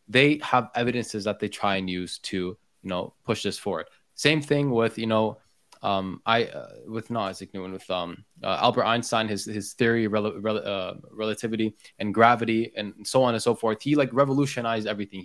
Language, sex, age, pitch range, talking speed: English, male, 20-39, 105-125 Hz, 195 wpm